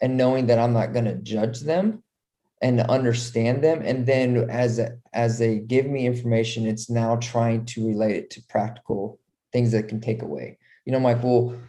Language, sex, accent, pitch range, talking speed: English, male, American, 115-130 Hz, 185 wpm